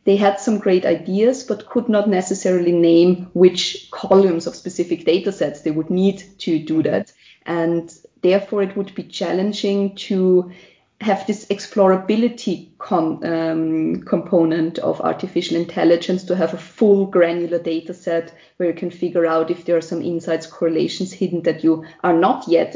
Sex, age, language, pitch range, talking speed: female, 20-39, English, 165-195 Hz, 160 wpm